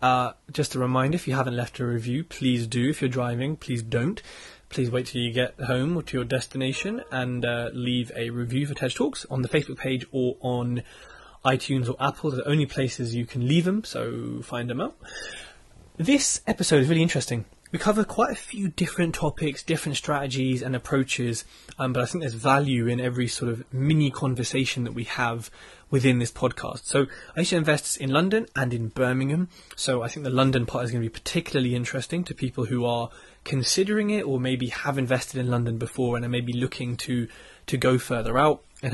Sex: male